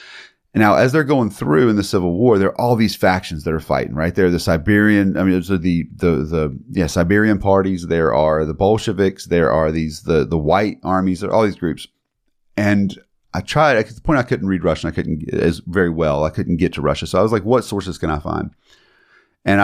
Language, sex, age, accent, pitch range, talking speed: English, male, 30-49, American, 85-110 Hz, 240 wpm